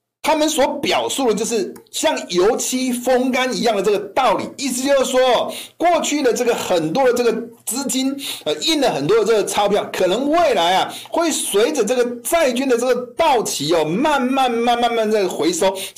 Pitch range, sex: 230-310 Hz, male